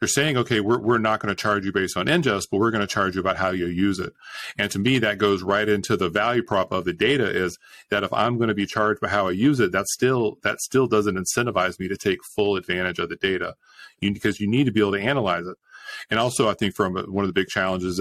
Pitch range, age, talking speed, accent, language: 95-115 Hz, 40-59, 280 wpm, American, English